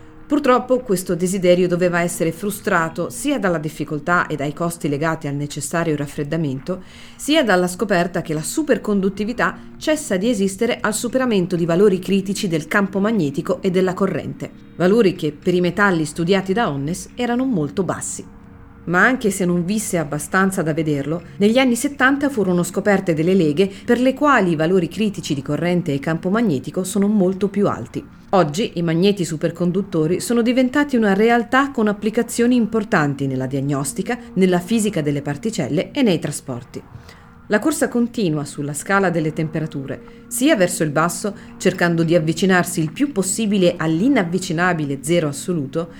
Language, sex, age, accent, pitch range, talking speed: Italian, female, 40-59, native, 160-215 Hz, 155 wpm